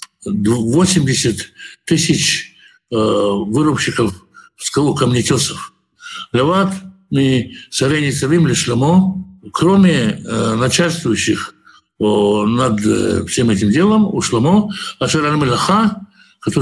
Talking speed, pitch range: 70 wpm, 130-175 Hz